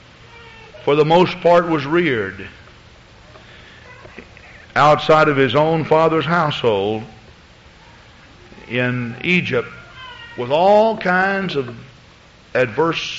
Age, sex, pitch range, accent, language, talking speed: 50-69, male, 115-155 Hz, American, English, 85 wpm